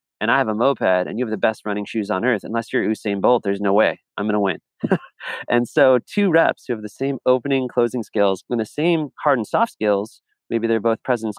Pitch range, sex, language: 105-125 Hz, male, English